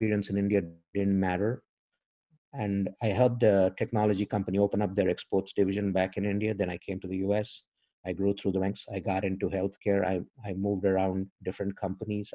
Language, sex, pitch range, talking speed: English, male, 95-120 Hz, 195 wpm